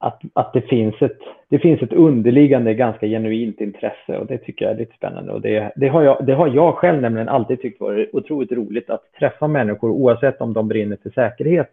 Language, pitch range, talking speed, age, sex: Swedish, 110-140 Hz, 190 wpm, 30-49, male